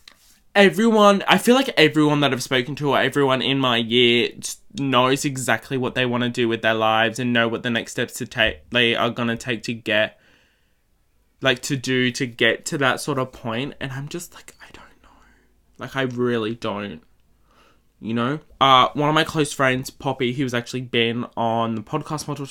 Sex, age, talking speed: male, 20-39, 205 wpm